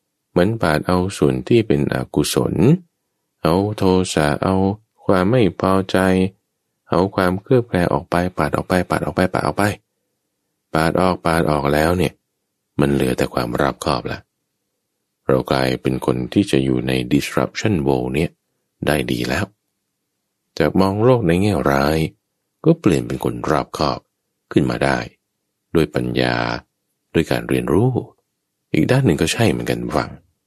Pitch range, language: 70-105 Hz, English